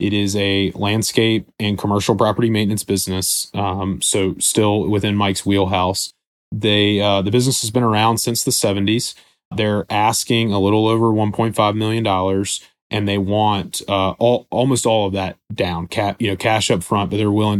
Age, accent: 30-49, American